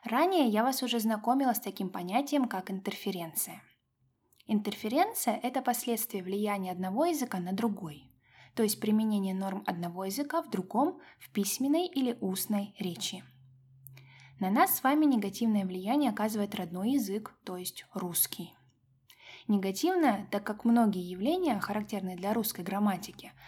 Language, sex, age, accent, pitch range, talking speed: Russian, female, 20-39, native, 185-240 Hz, 135 wpm